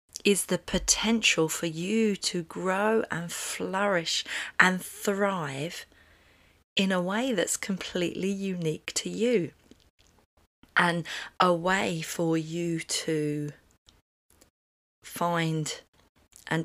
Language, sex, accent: English, female, British